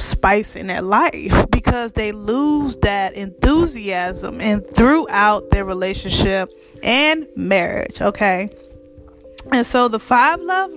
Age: 20-39